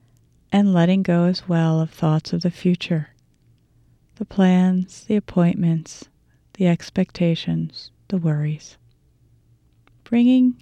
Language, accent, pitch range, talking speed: English, American, 120-195 Hz, 105 wpm